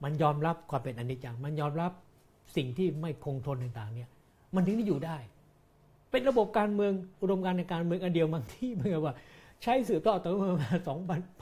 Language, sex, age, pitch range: Thai, male, 60-79, 130-175 Hz